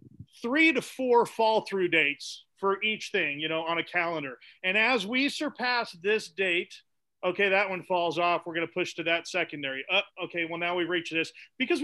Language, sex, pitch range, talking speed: English, male, 160-220 Hz, 210 wpm